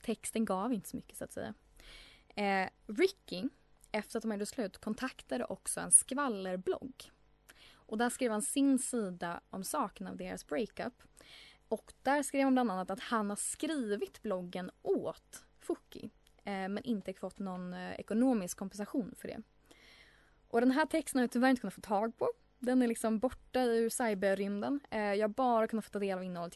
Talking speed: 185 wpm